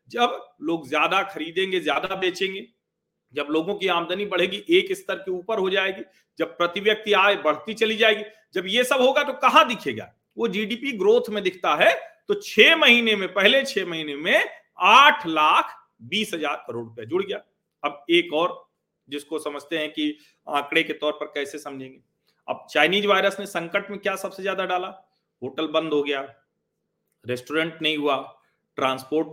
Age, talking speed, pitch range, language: 40-59, 170 wpm, 155-225 Hz, Hindi